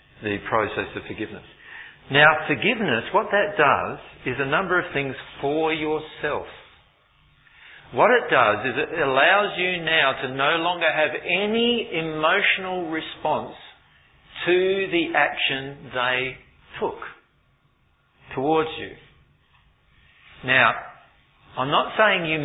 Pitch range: 125-170 Hz